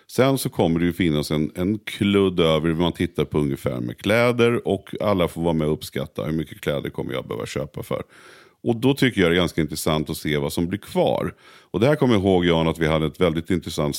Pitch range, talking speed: 75-105 Hz, 255 wpm